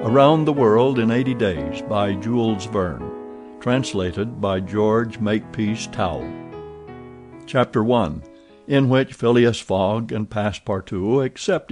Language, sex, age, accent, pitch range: Korean, male, 60-79, American, 100-125 Hz